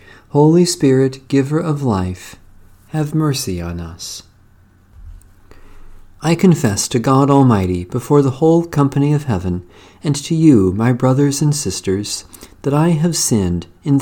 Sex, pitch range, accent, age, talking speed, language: male, 95-140 Hz, American, 50-69, 135 wpm, English